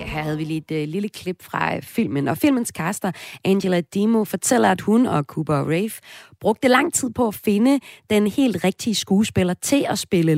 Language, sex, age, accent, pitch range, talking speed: Danish, female, 30-49, native, 155-210 Hz, 195 wpm